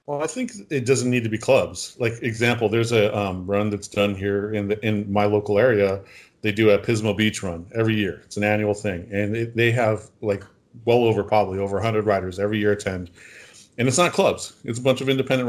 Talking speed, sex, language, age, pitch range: 230 wpm, male, English, 40-59, 100-120 Hz